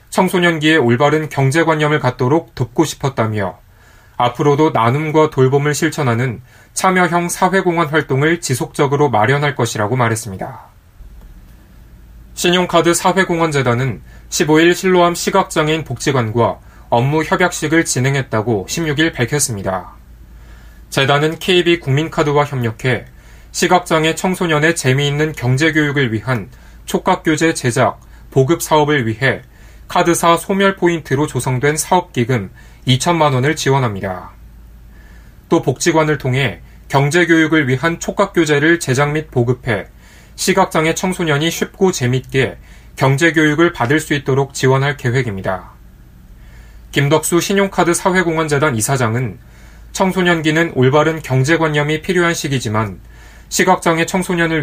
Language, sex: Korean, male